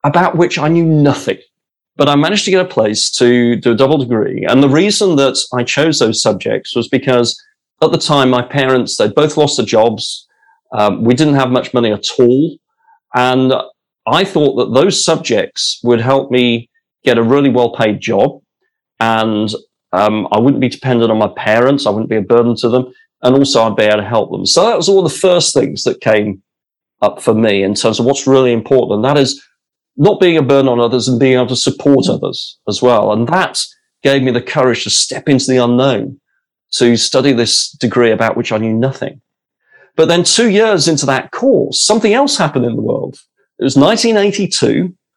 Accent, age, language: British, 30-49, English